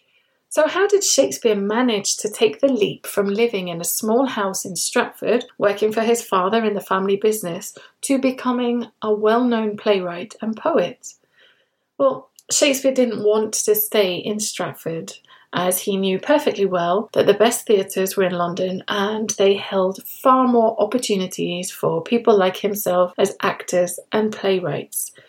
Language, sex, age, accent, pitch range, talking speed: English, female, 30-49, British, 200-245 Hz, 155 wpm